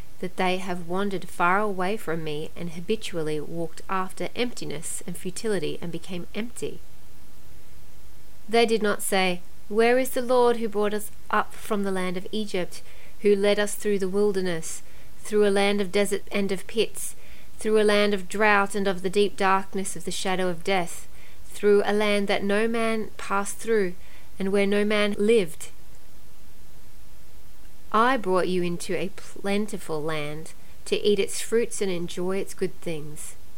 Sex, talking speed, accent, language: female, 165 wpm, Australian, English